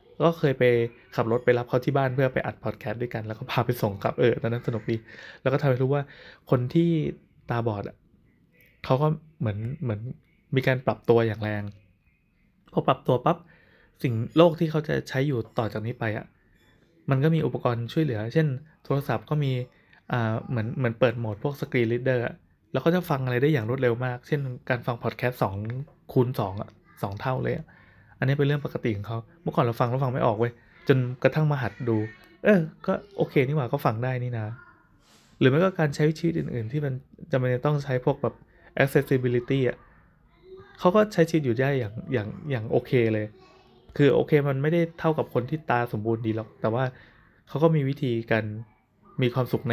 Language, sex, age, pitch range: Thai, male, 20-39, 115-145 Hz